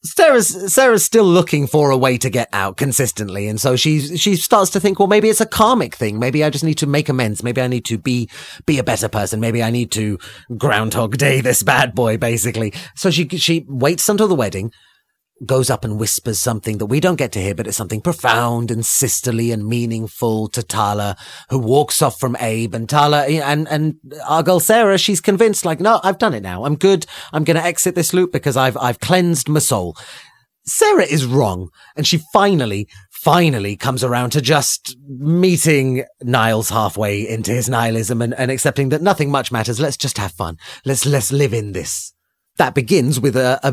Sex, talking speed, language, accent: male, 205 wpm, English, British